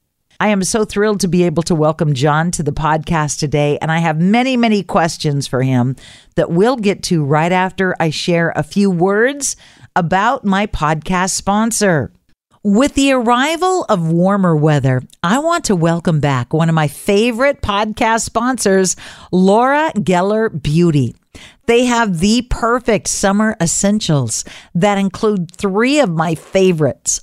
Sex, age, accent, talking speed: female, 50-69, American, 150 wpm